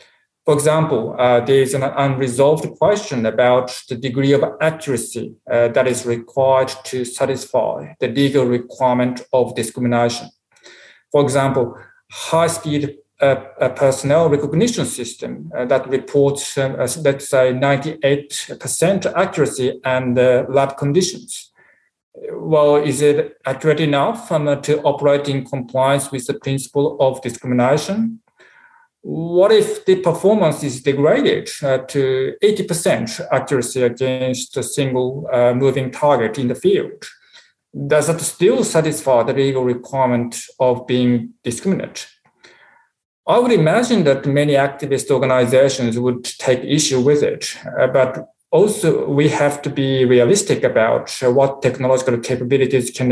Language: English